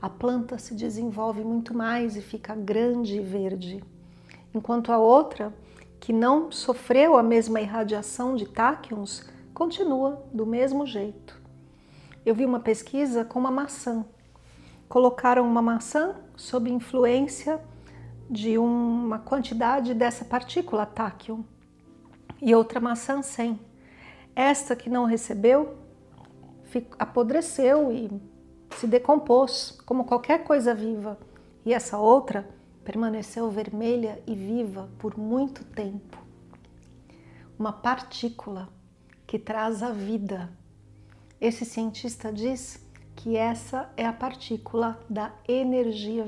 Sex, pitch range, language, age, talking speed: female, 210-250 Hz, Portuguese, 50-69, 110 wpm